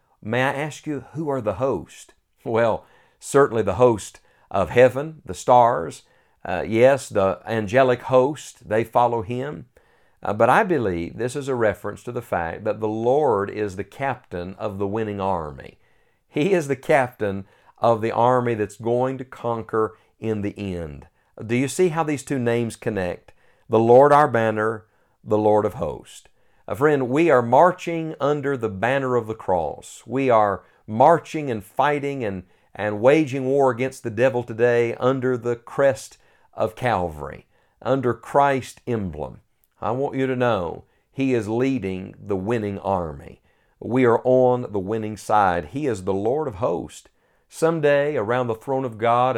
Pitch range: 105-130 Hz